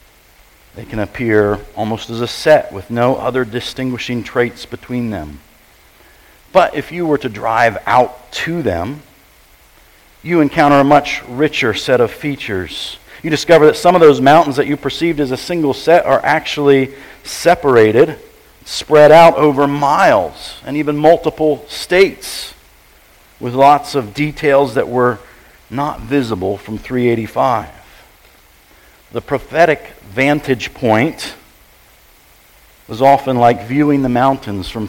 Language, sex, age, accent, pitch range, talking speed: English, male, 50-69, American, 110-150 Hz, 130 wpm